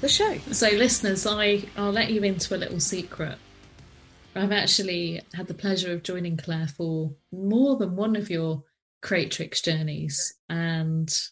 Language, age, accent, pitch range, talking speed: English, 30-49, British, 170-225 Hz, 150 wpm